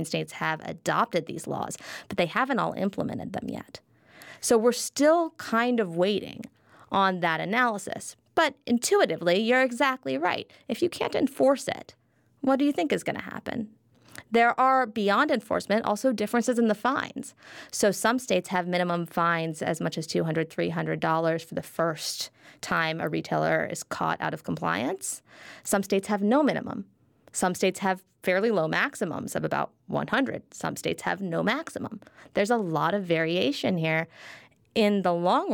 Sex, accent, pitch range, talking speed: female, American, 165-225 Hz, 165 wpm